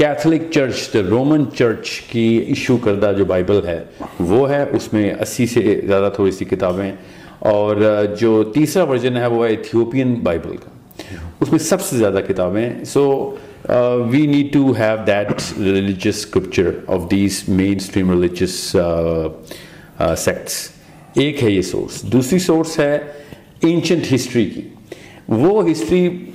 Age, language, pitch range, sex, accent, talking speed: 50-69, English, 105-145 Hz, male, Indian, 125 wpm